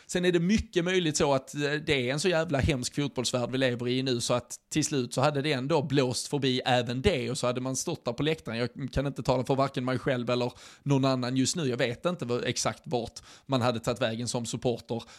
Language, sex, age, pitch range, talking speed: Swedish, male, 20-39, 125-145 Hz, 240 wpm